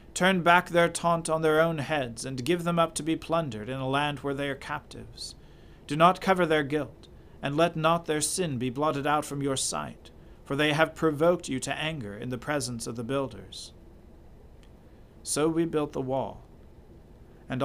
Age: 40-59